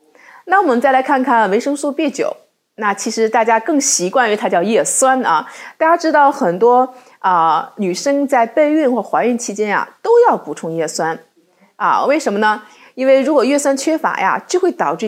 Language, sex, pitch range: Chinese, female, 205-300 Hz